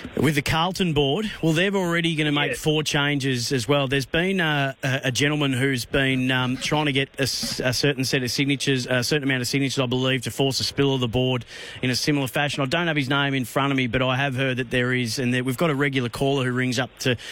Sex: male